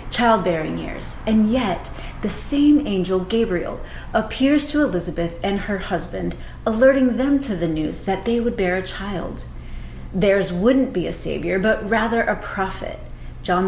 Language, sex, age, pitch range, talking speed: English, female, 30-49, 175-230 Hz, 155 wpm